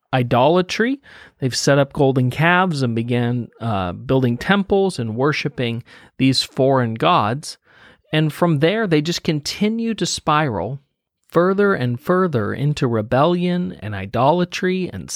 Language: English